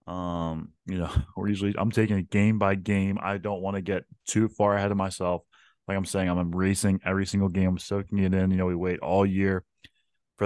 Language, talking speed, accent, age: English, 230 wpm, American, 20-39